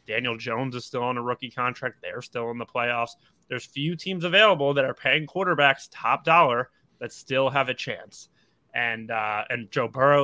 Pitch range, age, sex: 120-145 Hz, 20-39, male